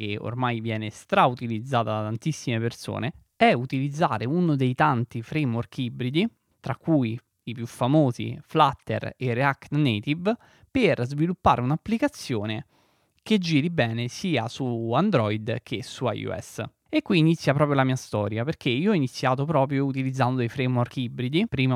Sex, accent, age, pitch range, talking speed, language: male, native, 20-39, 115-155 Hz, 145 wpm, Italian